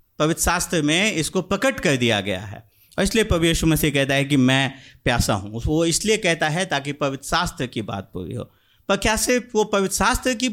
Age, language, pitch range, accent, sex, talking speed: 50-69, Hindi, 130-210 Hz, native, male, 210 wpm